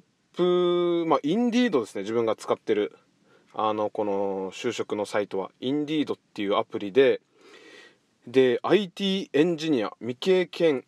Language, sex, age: Japanese, male, 20-39